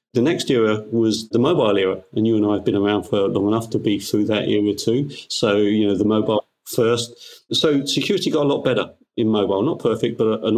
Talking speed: 235 wpm